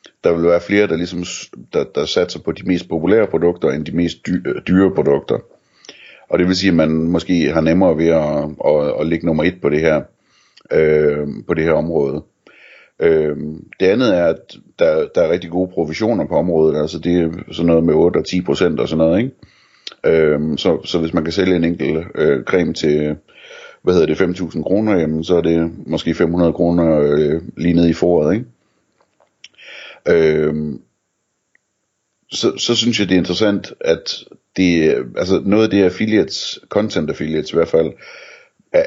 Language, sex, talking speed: Danish, male, 185 wpm